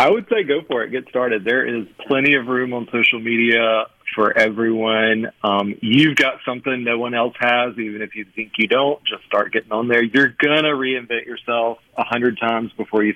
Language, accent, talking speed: English, American, 215 wpm